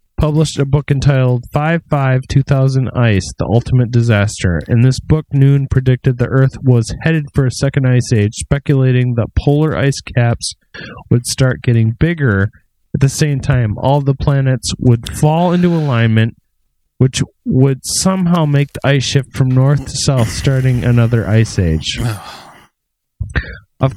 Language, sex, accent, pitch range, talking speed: English, male, American, 115-145 Hz, 150 wpm